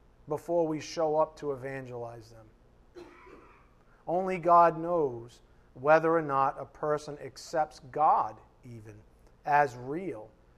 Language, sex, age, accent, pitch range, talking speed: English, male, 40-59, American, 130-170 Hz, 115 wpm